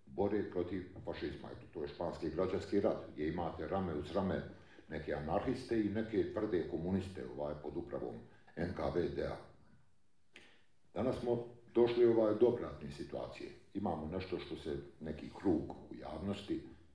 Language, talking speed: Croatian, 135 wpm